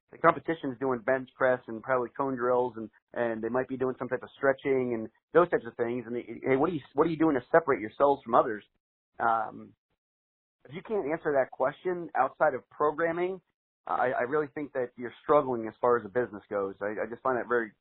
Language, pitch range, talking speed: English, 115-140 Hz, 235 wpm